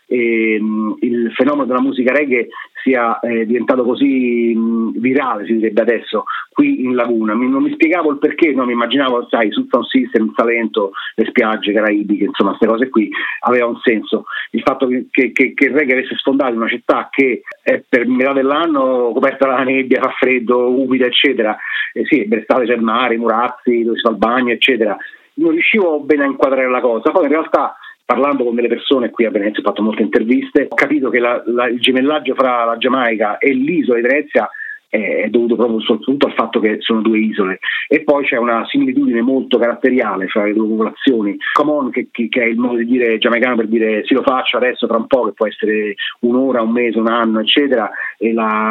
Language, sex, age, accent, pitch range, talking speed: Italian, male, 40-59, native, 110-130 Hz, 210 wpm